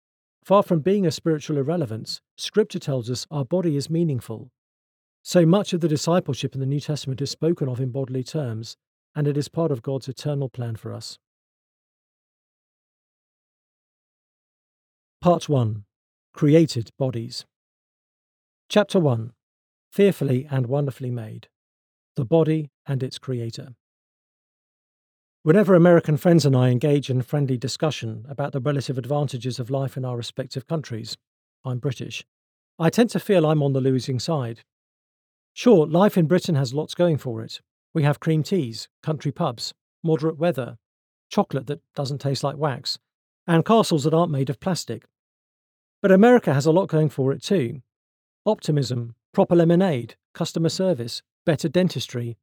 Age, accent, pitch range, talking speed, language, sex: 40-59, British, 125-165 Hz, 150 wpm, English, male